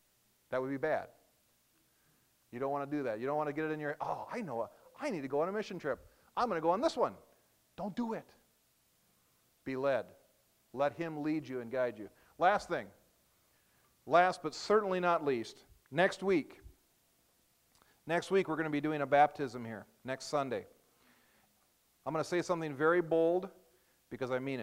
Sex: male